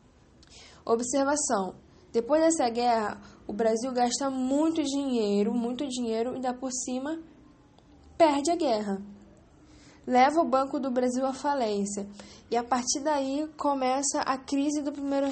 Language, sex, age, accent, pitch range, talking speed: English, female, 10-29, Brazilian, 230-275 Hz, 135 wpm